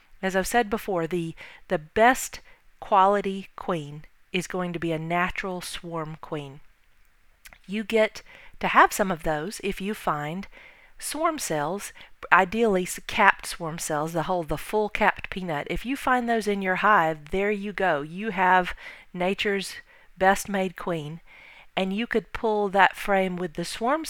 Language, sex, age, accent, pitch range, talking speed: English, female, 40-59, American, 175-220 Hz, 160 wpm